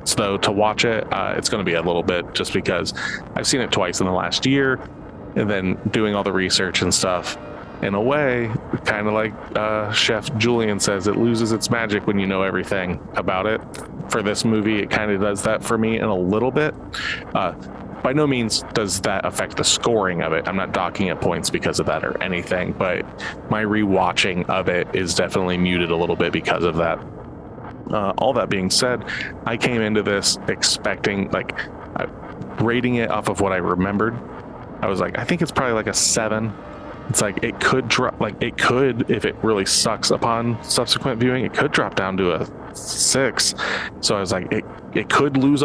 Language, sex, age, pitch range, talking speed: English, male, 30-49, 100-115 Hz, 210 wpm